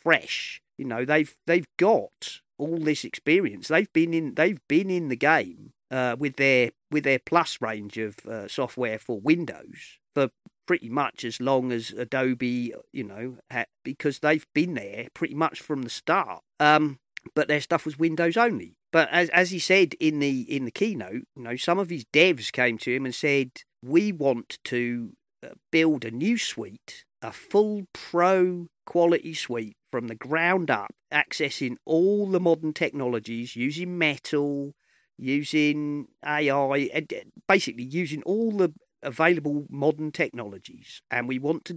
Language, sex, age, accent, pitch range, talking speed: English, male, 40-59, British, 125-165 Hz, 160 wpm